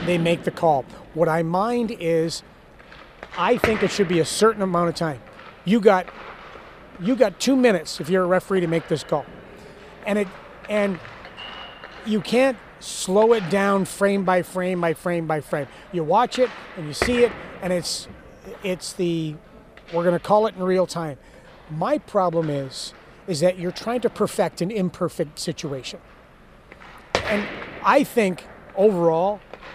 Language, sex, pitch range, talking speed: English, male, 165-205 Hz, 165 wpm